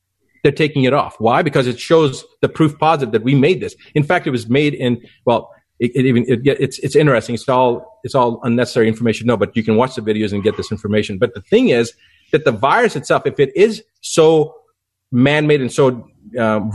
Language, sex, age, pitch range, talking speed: English, male, 40-59, 120-155 Hz, 220 wpm